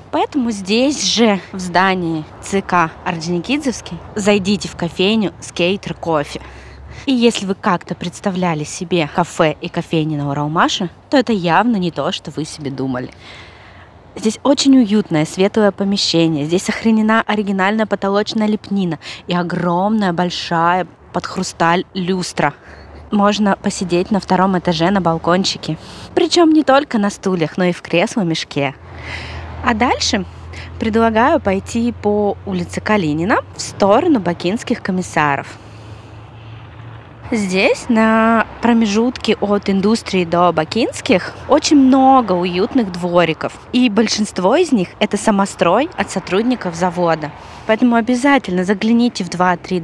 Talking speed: 120 wpm